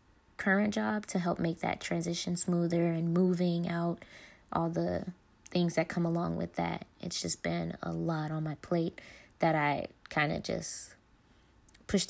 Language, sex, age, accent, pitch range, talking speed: English, female, 20-39, American, 160-180 Hz, 165 wpm